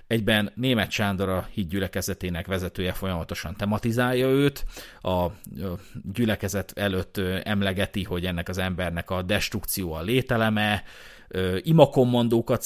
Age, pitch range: 30-49, 95-115 Hz